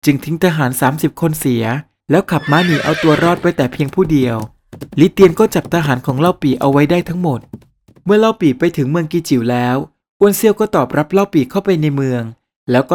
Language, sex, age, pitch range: Thai, male, 20-39, 130-170 Hz